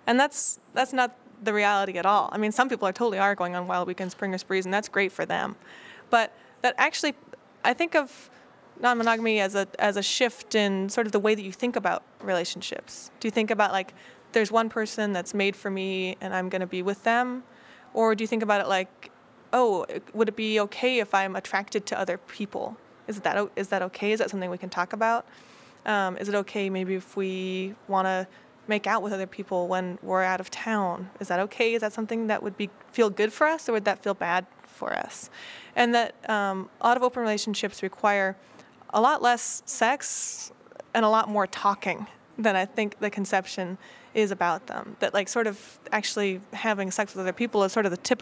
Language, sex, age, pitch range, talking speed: English, female, 20-39, 190-230 Hz, 220 wpm